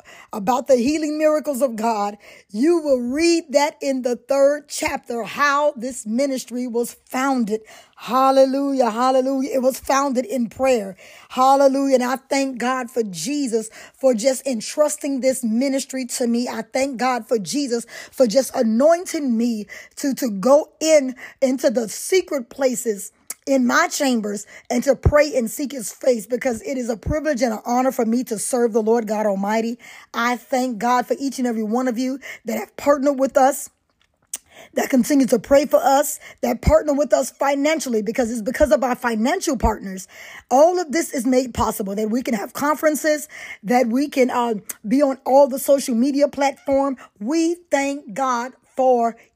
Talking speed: 175 wpm